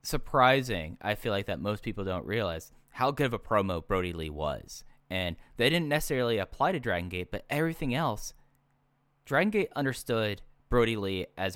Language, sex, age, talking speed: English, male, 10-29, 175 wpm